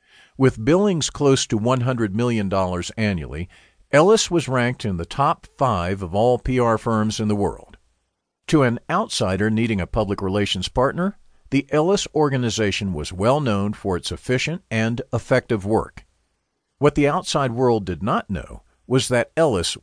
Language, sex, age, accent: English, male, 50-69, American